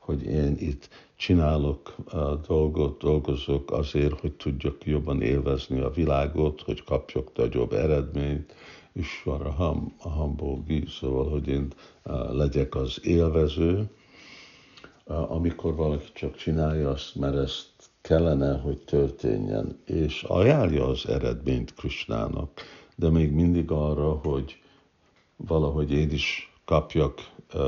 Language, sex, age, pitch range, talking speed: Hungarian, male, 60-79, 70-80 Hz, 120 wpm